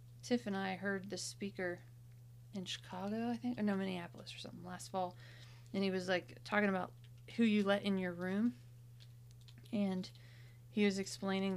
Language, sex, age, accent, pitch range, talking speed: English, female, 30-49, American, 120-190 Hz, 170 wpm